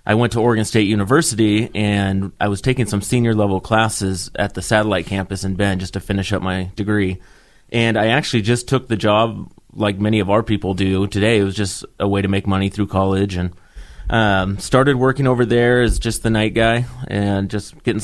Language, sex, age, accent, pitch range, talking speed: English, male, 30-49, American, 95-110 Hz, 215 wpm